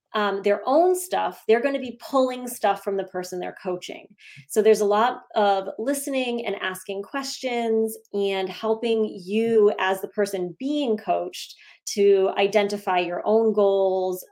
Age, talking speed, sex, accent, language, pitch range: 20-39, 155 wpm, female, American, English, 185-220 Hz